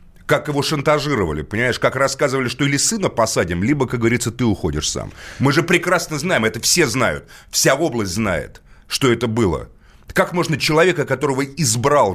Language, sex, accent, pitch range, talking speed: Russian, male, native, 110-145 Hz, 170 wpm